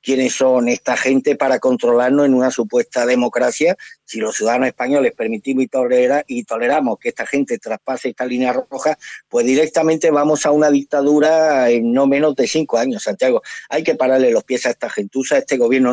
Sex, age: male, 50-69